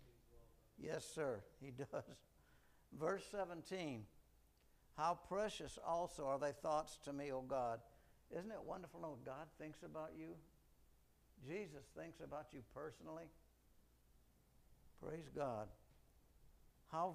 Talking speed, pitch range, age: 110 wpm, 120-175 Hz, 60-79